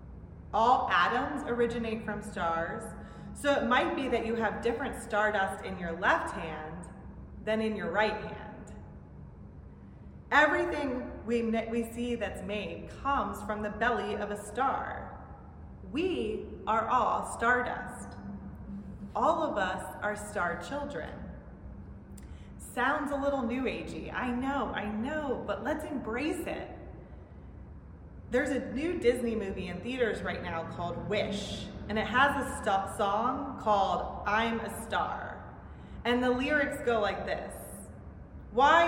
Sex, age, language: female, 30-49, English